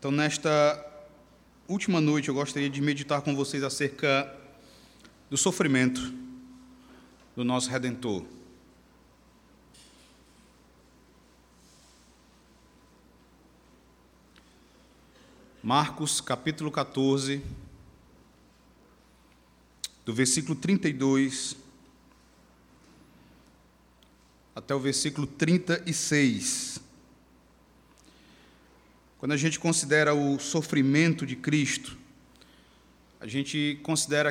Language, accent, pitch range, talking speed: Portuguese, Brazilian, 130-150 Hz, 65 wpm